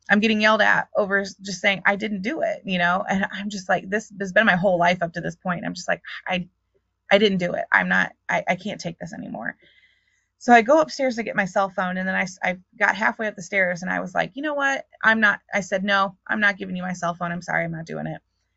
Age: 20-39